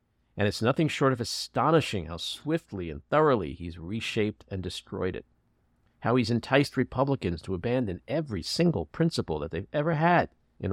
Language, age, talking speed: English, 50-69, 160 wpm